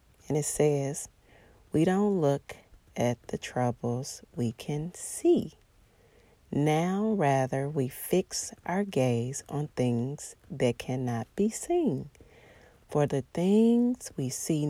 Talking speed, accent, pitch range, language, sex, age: 120 wpm, American, 125-160 Hz, English, female, 40-59